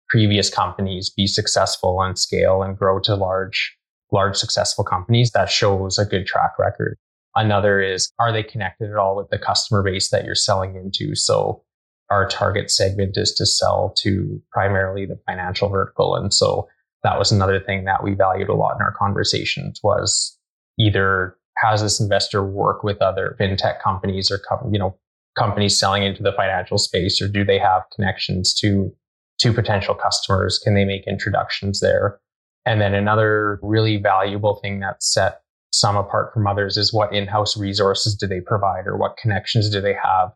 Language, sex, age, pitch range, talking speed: English, male, 20-39, 95-105 Hz, 180 wpm